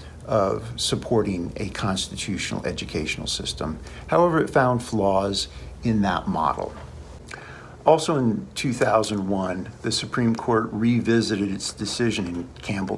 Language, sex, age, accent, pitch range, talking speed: English, male, 50-69, American, 95-120 Hz, 110 wpm